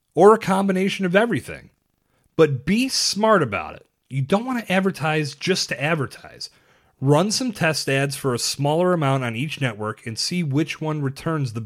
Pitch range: 105-150 Hz